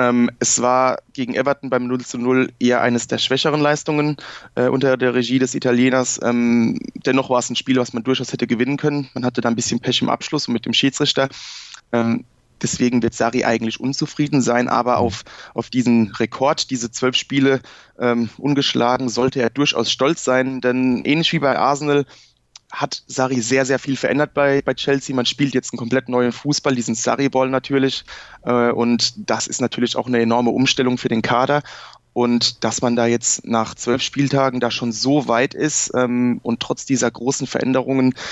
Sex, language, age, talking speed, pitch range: male, German, 20-39, 180 wpm, 120-135 Hz